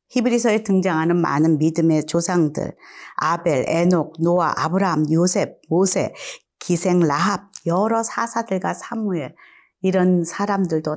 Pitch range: 165-210 Hz